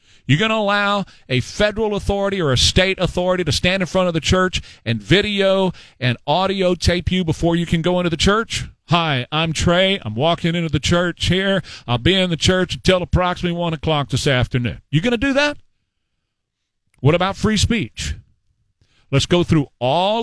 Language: English